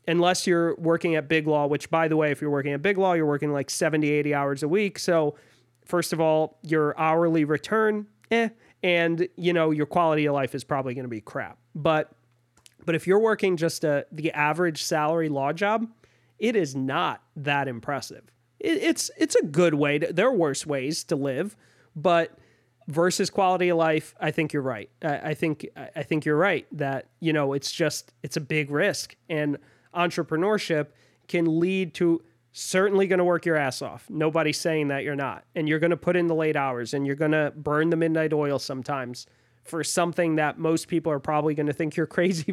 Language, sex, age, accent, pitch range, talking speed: English, male, 30-49, American, 140-175 Hz, 210 wpm